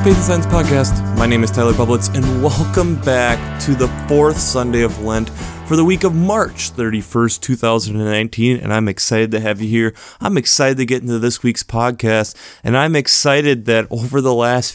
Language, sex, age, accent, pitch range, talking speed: English, male, 20-39, American, 115-145 Hz, 185 wpm